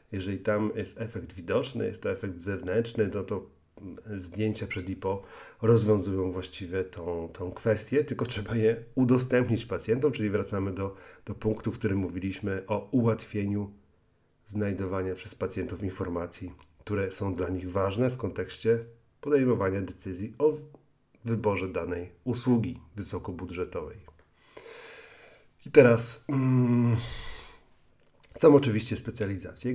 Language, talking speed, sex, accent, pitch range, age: Polish, 115 wpm, male, native, 95-115 Hz, 40-59